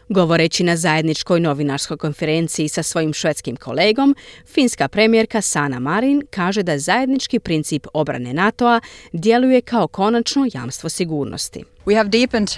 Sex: female